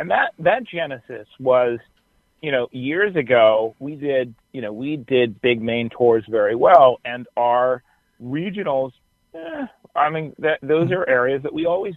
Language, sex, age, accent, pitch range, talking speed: English, male, 40-59, American, 115-145 Hz, 165 wpm